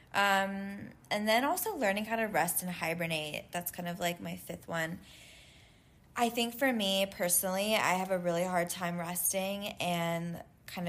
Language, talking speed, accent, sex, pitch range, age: English, 170 wpm, American, female, 165-185 Hz, 20-39